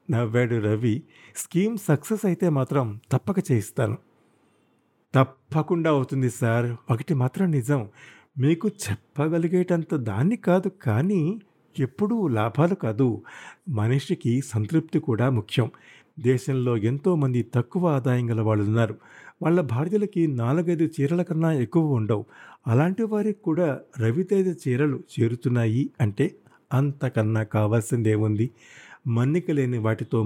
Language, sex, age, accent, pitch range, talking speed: Telugu, male, 50-69, native, 120-160 Hz, 100 wpm